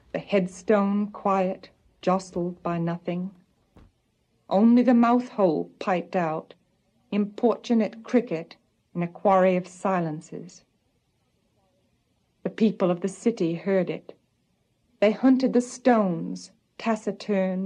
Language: English